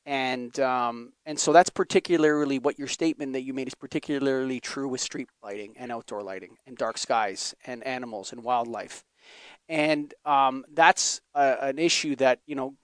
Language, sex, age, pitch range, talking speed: English, male, 30-49, 130-165 Hz, 175 wpm